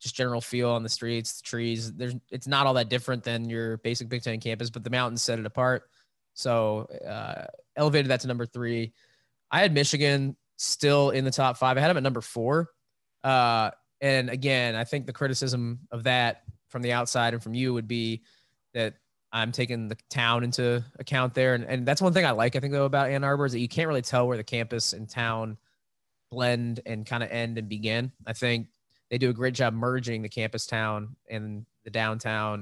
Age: 20-39